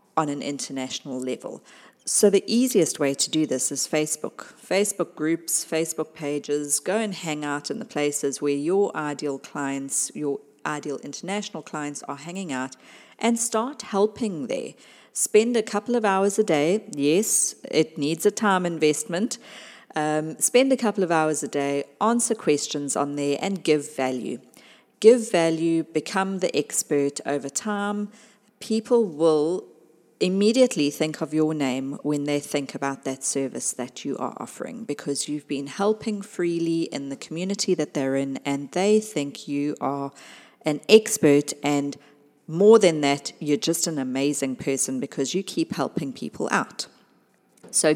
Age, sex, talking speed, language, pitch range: 40-59, female, 155 wpm, English, 140-195 Hz